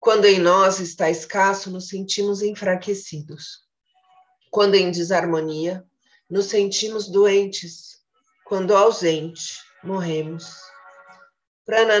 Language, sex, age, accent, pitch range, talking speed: Portuguese, female, 40-59, Brazilian, 170-210 Hz, 90 wpm